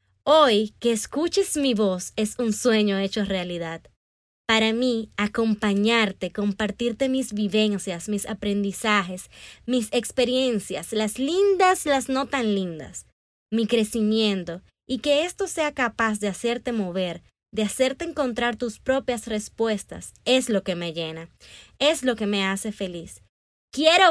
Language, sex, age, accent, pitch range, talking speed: Spanish, female, 20-39, American, 195-255 Hz, 135 wpm